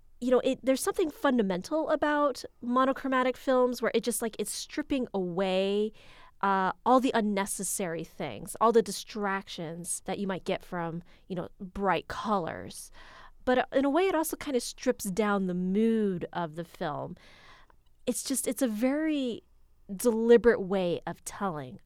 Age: 30-49